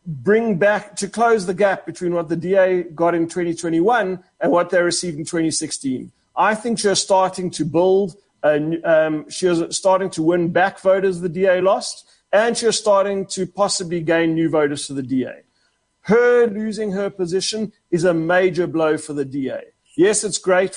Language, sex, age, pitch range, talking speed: English, male, 40-59, 155-190 Hz, 175 wpm